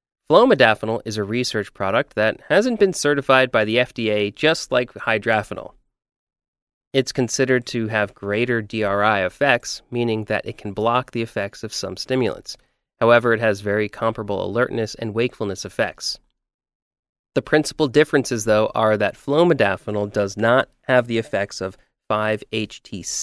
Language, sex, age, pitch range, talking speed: English, male, 30-49, 105-135 Hz, 140 wpm